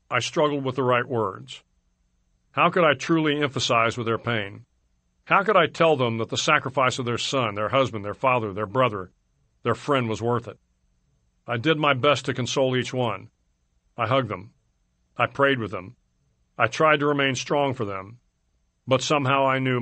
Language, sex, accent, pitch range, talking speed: English, male, American, 105-135 Hz, 190 wpm